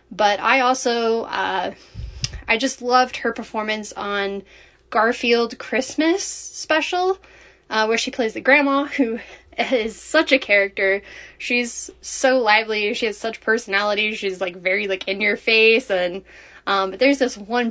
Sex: female